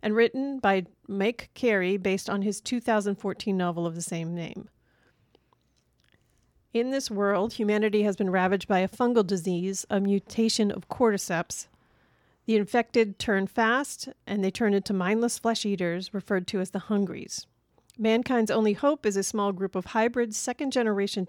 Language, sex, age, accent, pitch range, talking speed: English, female, 40-59, American, 195-230 Hz, 155 wpm